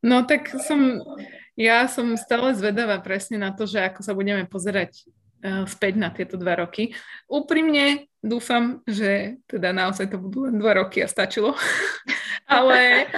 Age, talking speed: 20-39, 155 wpm